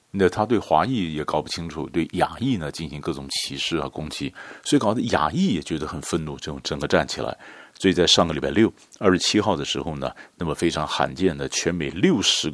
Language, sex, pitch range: Chinese, male, 70-90 Hz